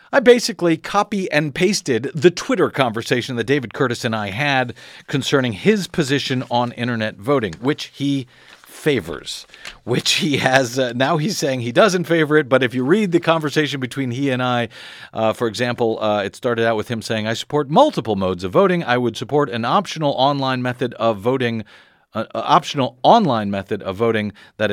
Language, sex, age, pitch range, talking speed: English, male, 50-69, 115-165 Hz, 185 wpm